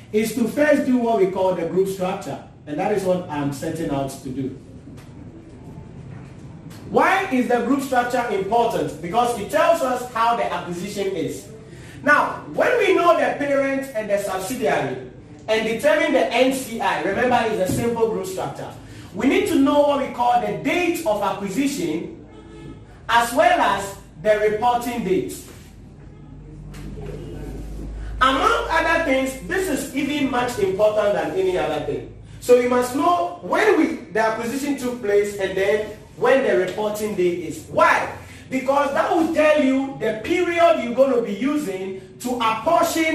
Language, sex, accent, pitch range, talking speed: English, male, Nigerian, 175-275 Hz, 155 wpm